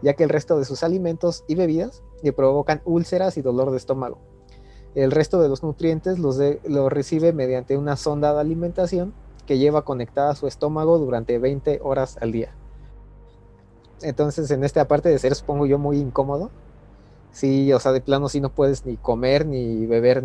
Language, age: Spanish, 30-49